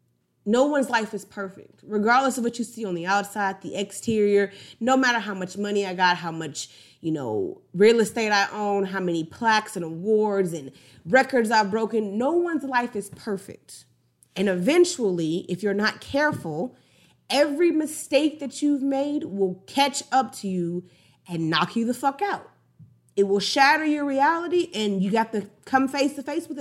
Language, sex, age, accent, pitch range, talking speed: English, female, 30-49, American, 170-245 Hz, 180 wpm